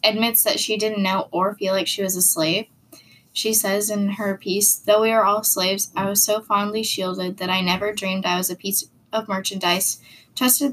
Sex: female